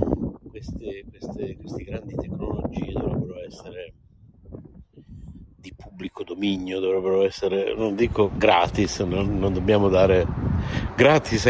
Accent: native